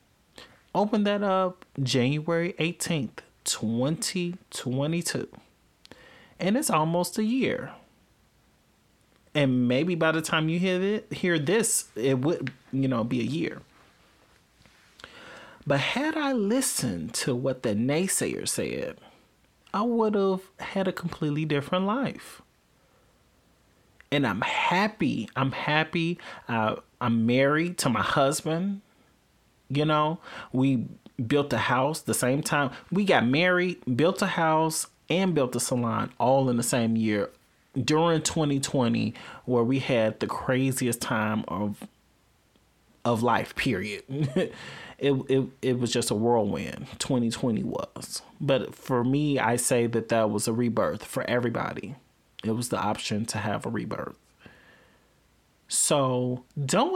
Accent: American